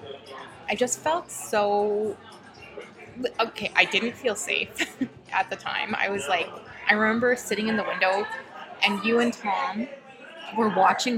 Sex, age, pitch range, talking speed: female, 20-39, 190-230 Hz, 145 wpm